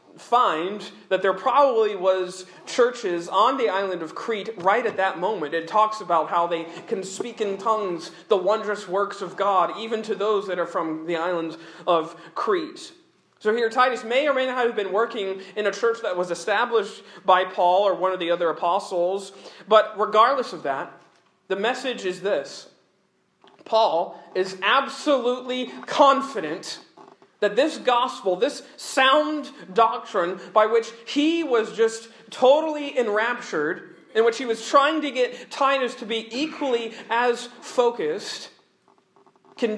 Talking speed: 155 wpm